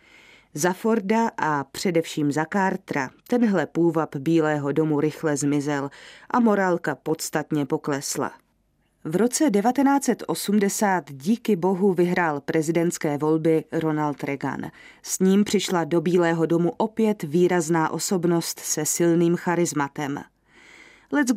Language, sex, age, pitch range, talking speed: Czech, female, 30-49, 155-200 Hz, 110 wpm